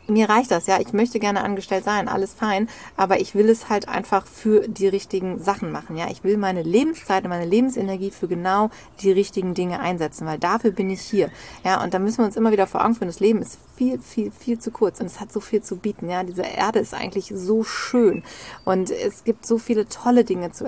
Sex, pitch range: female, 195-225 Hz